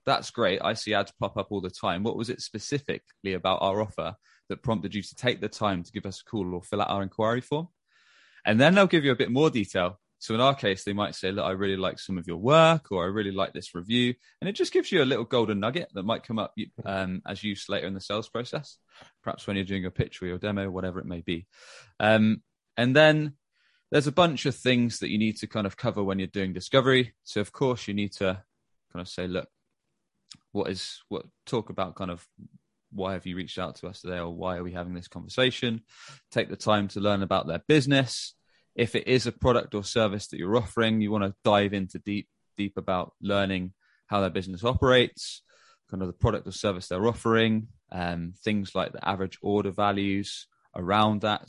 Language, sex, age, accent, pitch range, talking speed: English, male, 20-39, British, 95-115 Hz, 230 wpm